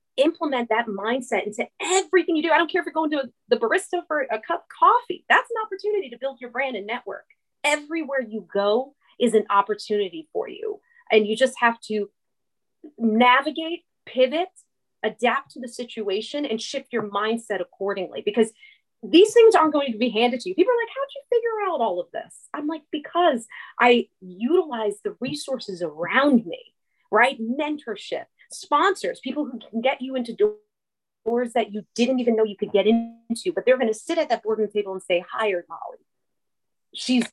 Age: 30-49